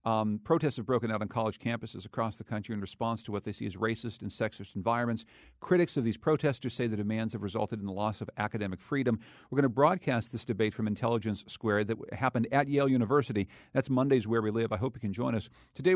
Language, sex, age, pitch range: English, male, 50-69, 110-135 Hz